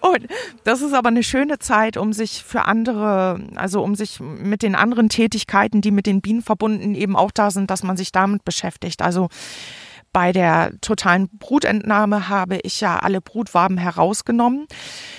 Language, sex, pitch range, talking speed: German, female, 195-225 Hz, 165 wpm